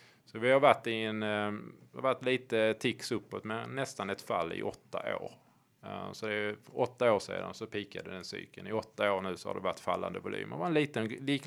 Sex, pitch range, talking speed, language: male, 100-125 Hz, 210 wpm, Swedish